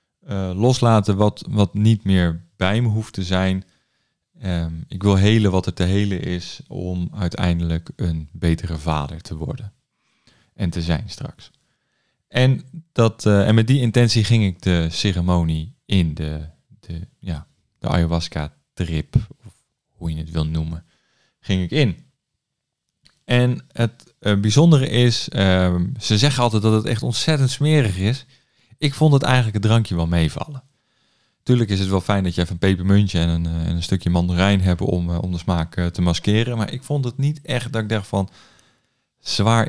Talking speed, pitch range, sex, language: 165 wpm, 90-120 Hz, male, Dutch